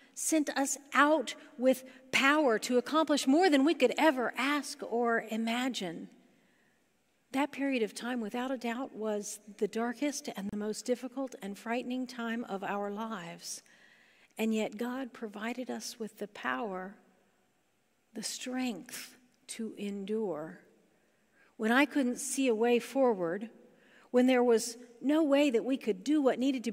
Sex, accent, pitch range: female, American, 220-260 Hz